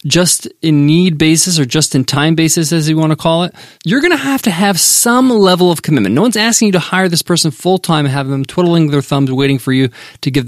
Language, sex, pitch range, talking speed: English, male, 150-210 Hz, 235 wpm